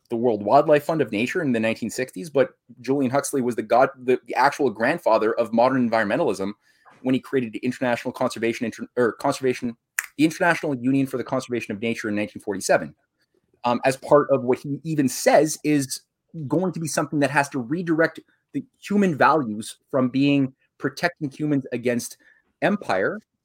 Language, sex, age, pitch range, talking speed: English, male, 30-49, 120-145 Hz, 170 wpm